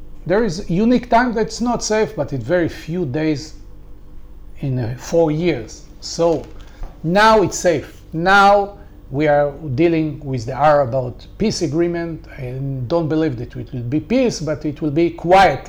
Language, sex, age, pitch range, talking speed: English, male, 40-59, 140-200 Hz, 160 wpm